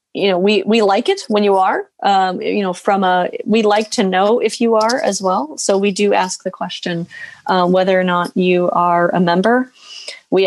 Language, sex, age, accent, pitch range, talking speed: English, female, 30-49, American, 185-225 Hz, 220 wpm